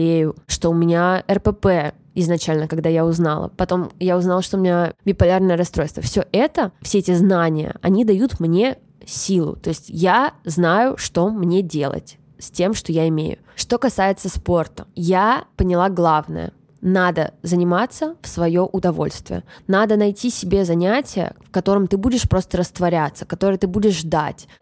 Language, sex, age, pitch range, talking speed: Russian, female, 20-39, 170-210 Hz, 150 wpm